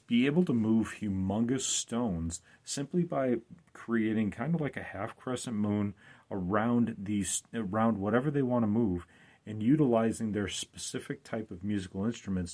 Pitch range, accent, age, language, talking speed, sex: 95-120 Hz, American, 40-59, English, 155 wpm, male